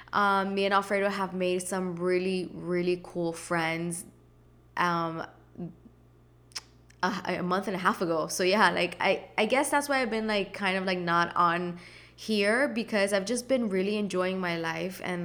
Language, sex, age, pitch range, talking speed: English, female, 20-39, 170-195 Hz, 175 wpm